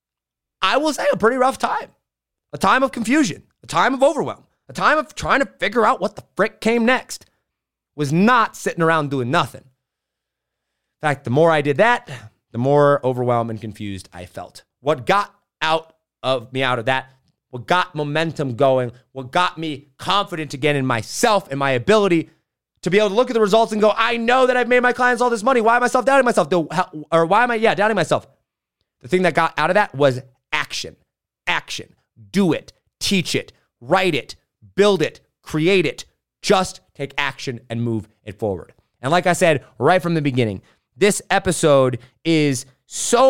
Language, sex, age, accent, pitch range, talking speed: English, male, 30-49, American, 135-200 Hz, 195 wpm